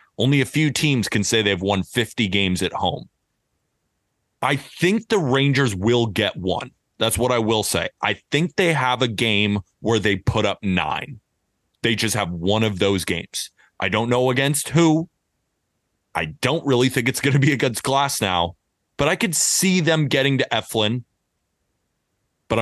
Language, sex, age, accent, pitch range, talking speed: English, male, 30-49, American, 95-130 Hz, 180 wpm